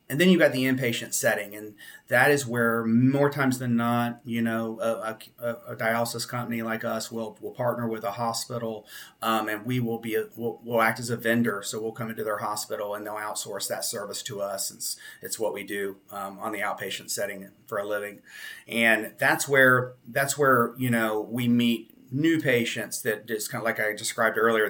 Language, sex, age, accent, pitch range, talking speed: English, male, 30-49, American, 105-120 Hz, 215 wpm